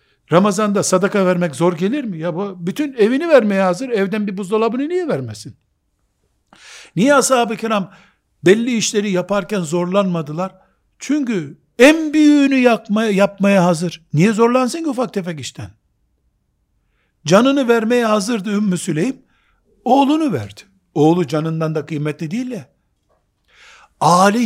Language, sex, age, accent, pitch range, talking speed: Turkish, male, 60-79, native, 160-220 Hz, 120 wpm